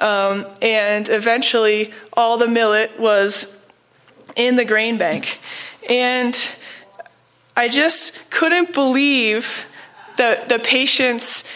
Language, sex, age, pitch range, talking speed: English, female, 20-39, 215-280 Hz, 100 wpm